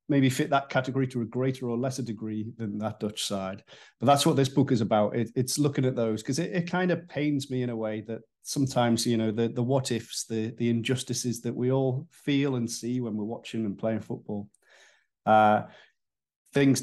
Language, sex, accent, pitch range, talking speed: English, male, British, 110-130 Hz, 220 wpm